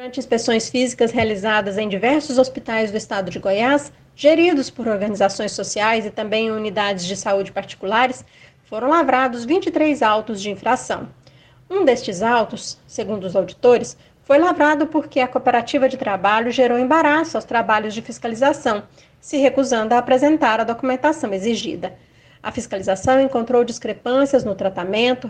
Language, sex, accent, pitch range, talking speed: Portuguese, female, Brazilian, 215-270 Hz, 140 wpm